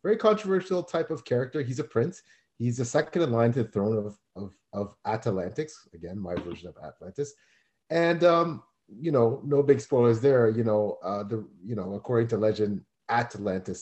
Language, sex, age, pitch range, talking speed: English, male, 30-49, 100-125 Hz, 185 wpm